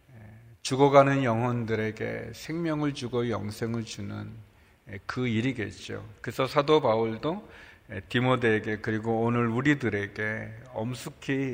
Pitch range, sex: 110-140 Hz, male